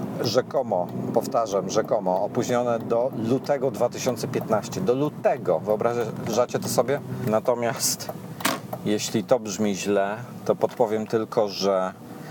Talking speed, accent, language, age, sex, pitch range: 100 wpm, native, Polish, 40-59, male, 105-125 Hz